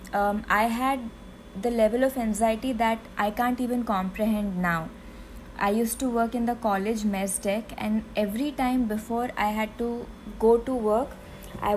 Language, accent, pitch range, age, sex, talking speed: English, Indian, 205-255 Hz, 20-39, female, 170 wpm